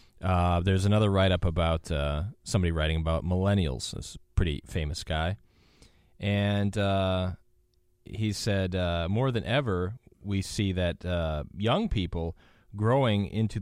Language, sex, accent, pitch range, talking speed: English, male, American, 85-105 Hz, 140 wpm